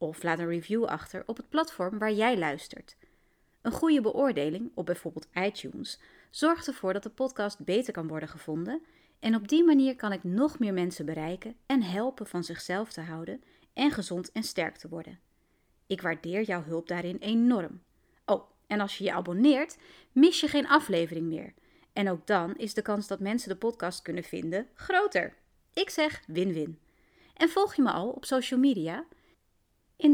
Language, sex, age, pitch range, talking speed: Dutch, female, 30-49, 175-270 Hz, 180 wpm